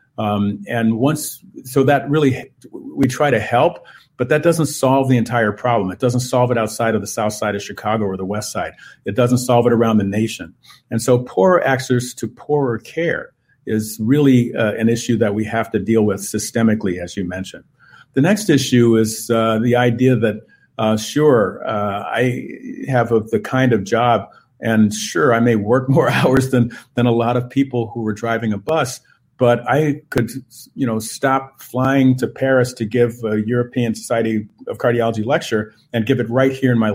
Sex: male